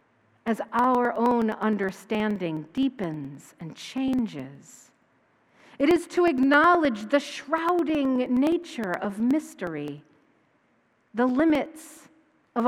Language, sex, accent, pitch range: English, female, American, 210-310 Hz